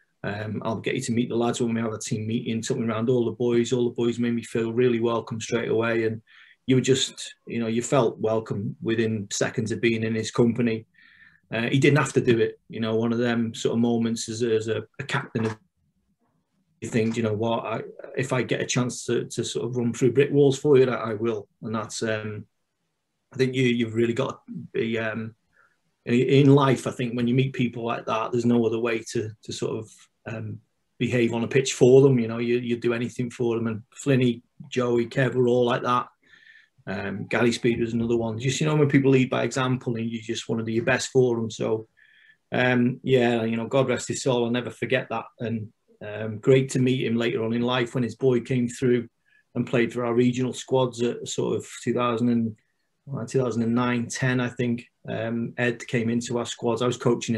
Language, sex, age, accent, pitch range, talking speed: English, male, 30-49, British, 115-125 Hz, 220 wpm